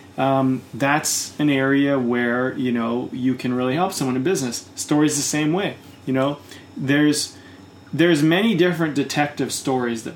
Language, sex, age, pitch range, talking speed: English, male, 30-49, 120-145 Hz, 160 wpm